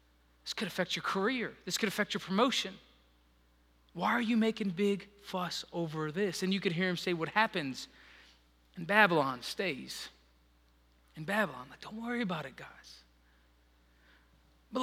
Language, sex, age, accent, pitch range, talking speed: English, male, 30-49, American, 145-215 Hz, 155 wpm